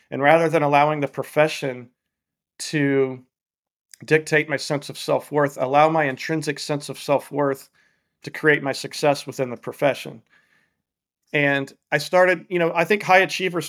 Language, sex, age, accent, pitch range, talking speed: English, male, 40-59, American, 135-155 Hz, 150 wpm